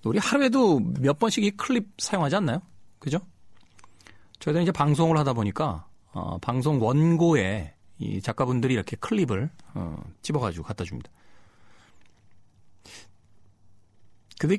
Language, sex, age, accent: Korean, male, 40-59, native